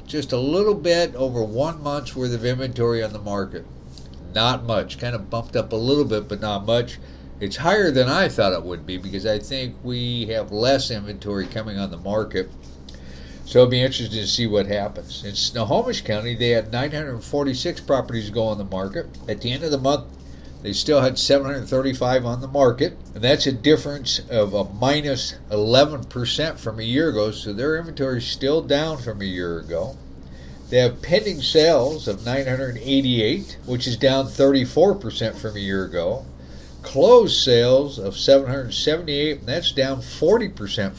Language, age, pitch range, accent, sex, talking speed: English, 50-69, 100-135 Hz, American, male, 175 wpm